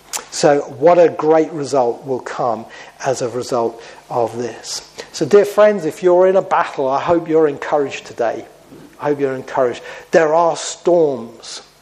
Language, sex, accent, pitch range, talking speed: English, male, British, 135-180 Hz, 160 wpm